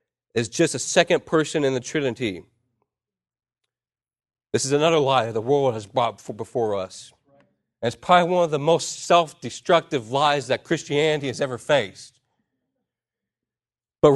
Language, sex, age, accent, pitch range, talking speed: English, male, 40-59, American, 150-205 Hz, 140 wpm